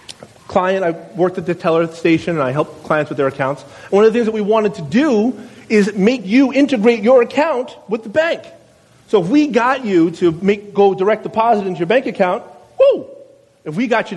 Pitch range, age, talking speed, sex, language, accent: 170-225 Hz, 30-49, 210 wpm, male, English, American